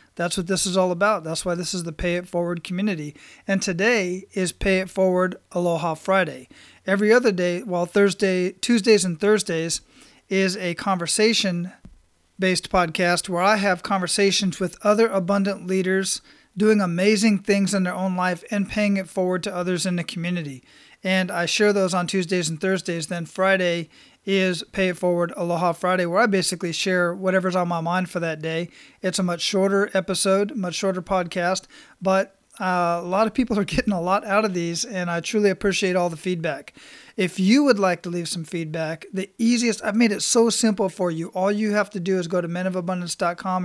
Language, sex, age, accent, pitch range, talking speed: English, male, 40-59, American, 175-200 Hz, 195 wpm